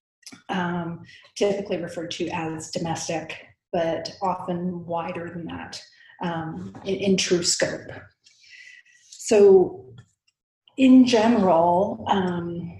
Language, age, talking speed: English, 30-49, 95 wpm